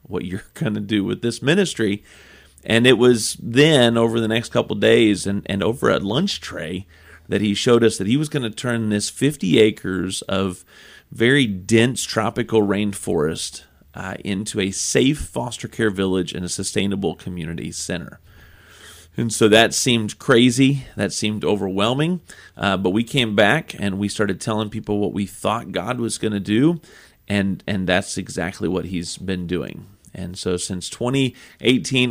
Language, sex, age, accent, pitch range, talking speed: English, male, 40-59, American, 100-125 Hz, 170 wpm